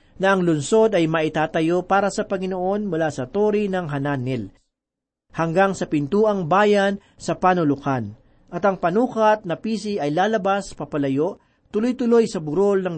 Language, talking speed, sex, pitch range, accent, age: Filipino, 145 wpm, male, 155-205 Hz, native, 40-59